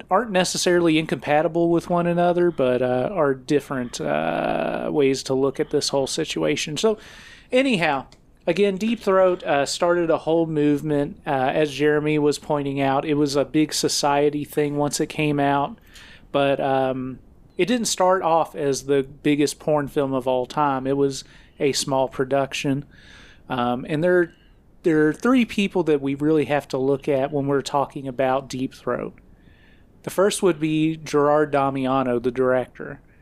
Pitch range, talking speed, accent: 135-155 Hz, 165 wpm, American